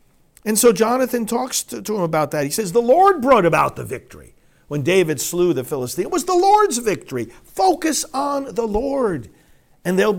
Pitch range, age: 140-215 Hz, 50-69